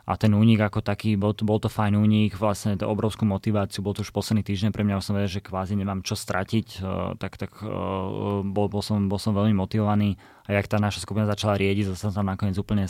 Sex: male